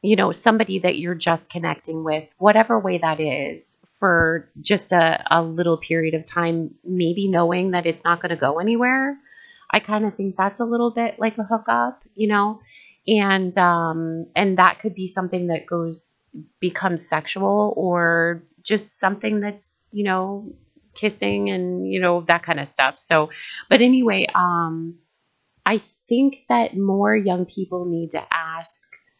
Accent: American